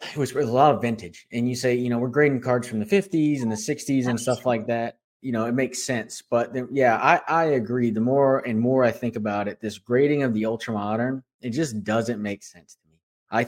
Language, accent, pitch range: English, American, 110-130 Hz